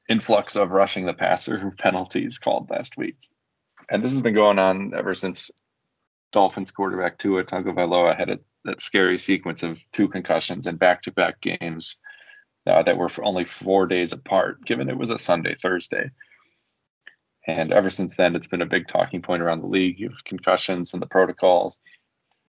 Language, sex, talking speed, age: English, male, 165 wpm, 20-39